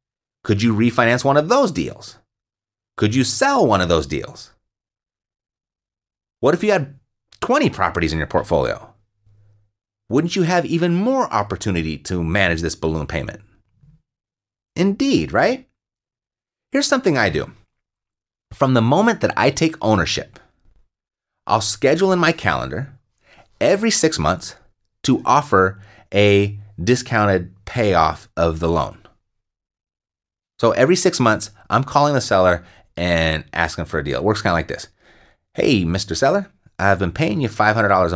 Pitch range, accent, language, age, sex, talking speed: 95-130 Hz, American, English, 30-49, male, 140 wpm